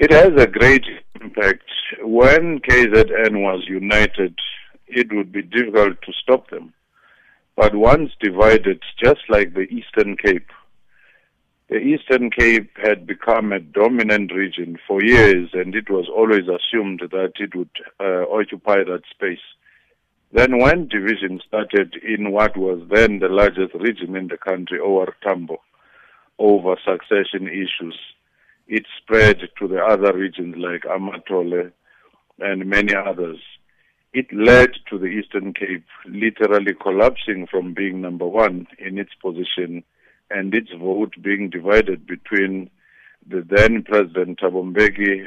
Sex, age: male, 50-69